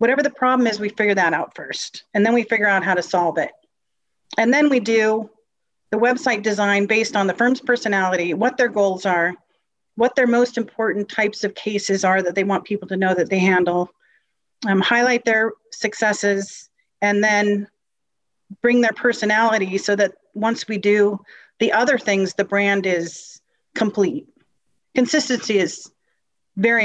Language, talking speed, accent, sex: English, 170 wpm, American, female